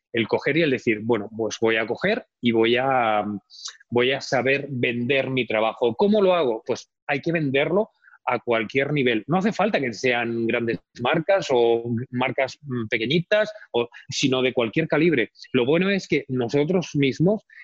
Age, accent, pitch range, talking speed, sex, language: 30-49, Spanish, 120-145 Hz, 165 wpm, male, Spanish